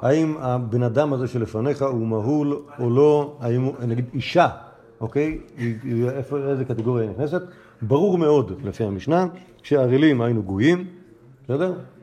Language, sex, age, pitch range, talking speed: Hebrew, male, 50-69, 115-155 Hz, 130 wpm